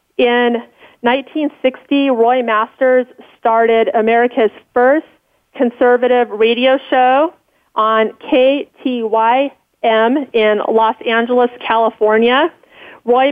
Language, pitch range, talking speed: English, 220-255 Hz, 75 wpm